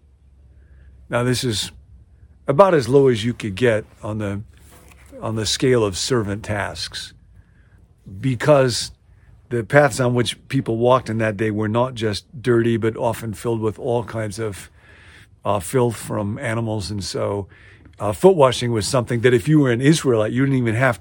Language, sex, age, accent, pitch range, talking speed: English, male, 50-69, American, 95-125 Hz, 170 wpm